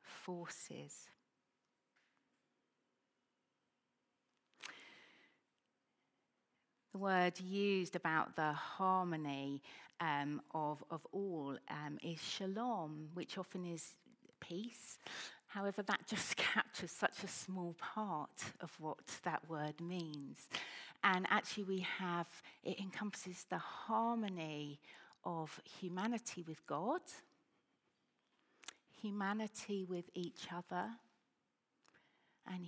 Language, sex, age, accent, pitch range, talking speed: English, female, 40-59, British, 165-200 Hz, 90 wpm